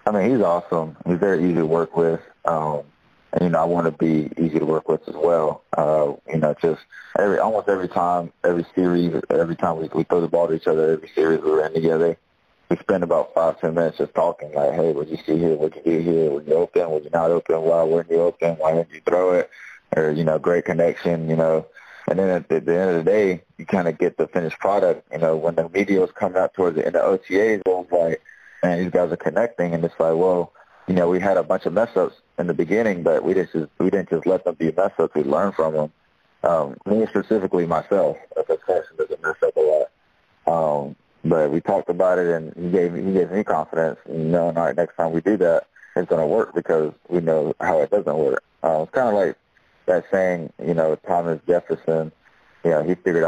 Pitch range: 80-95 Hz